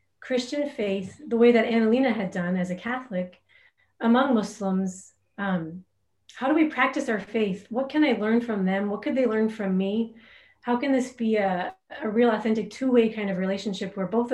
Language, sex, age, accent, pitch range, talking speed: English, female, 30-49, American, 195-235 Hz, 195 wpm